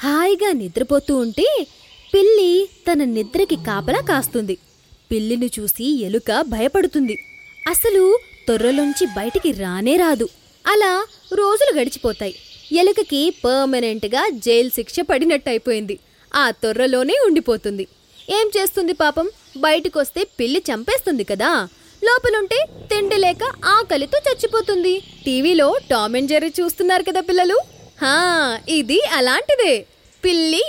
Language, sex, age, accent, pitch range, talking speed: Telugu, female, 20-39, native, 245-375 Hz, 95 wpm